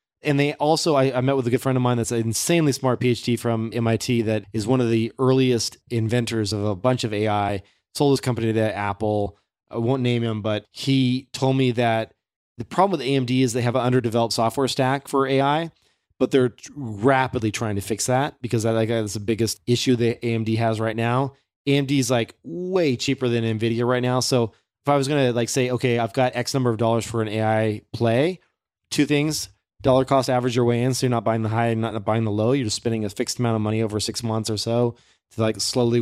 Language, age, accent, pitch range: English, 20-39, American, 110-130 Hz